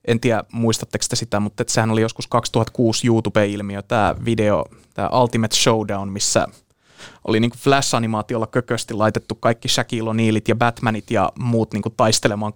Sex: male